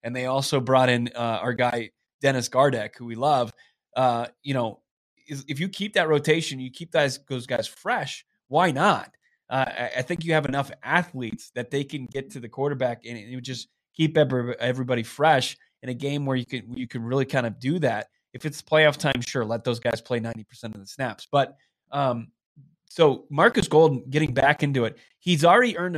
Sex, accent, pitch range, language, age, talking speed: male, American, 115-140 Hz, English, 20-39, 215 wpm